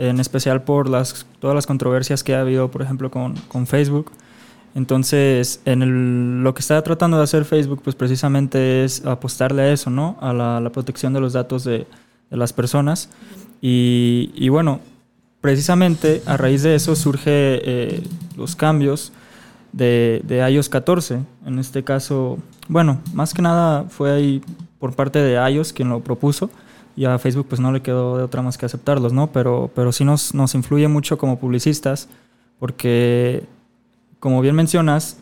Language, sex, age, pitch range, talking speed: Spanish, male, 20-39, 125-145 Hz, 170 wpm